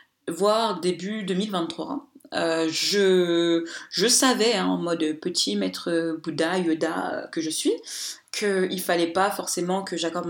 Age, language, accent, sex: 20-39, French, French, female